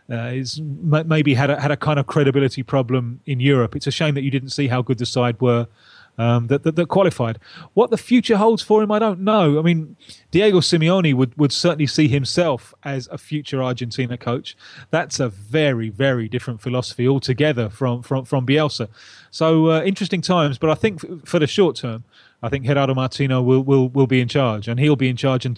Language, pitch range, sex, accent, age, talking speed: English, 125-155 Hz, male, British, 30-49, 210 wpm